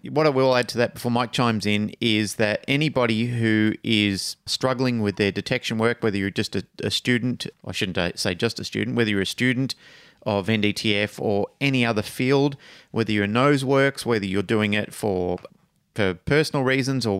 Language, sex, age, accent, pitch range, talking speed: English, male, 30-49, Australian, 105-120 Hz, 200 wpm